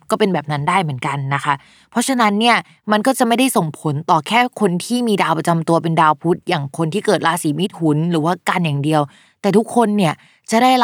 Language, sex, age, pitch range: Thai, female, 20-39, 165-215 Hz